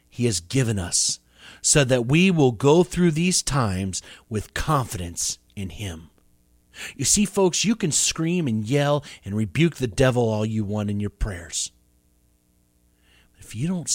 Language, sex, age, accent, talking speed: English, male, 40-59, American, 160 wpm